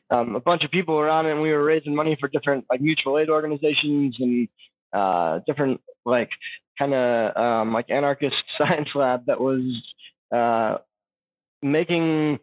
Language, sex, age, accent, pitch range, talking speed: English, male, 20-39, American, 135-155 Hz, 160 wpm